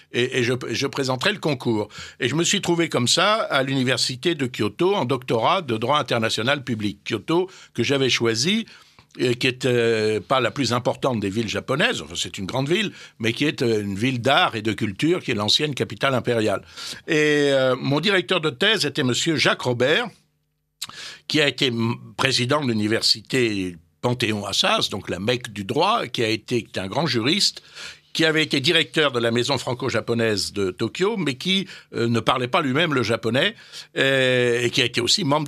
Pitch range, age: 115-150 Hz, 60-79